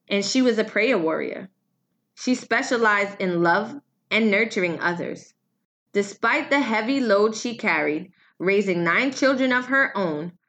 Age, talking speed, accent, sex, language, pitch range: 20-39, 145 wpm, American, female, English, 175-225 Hz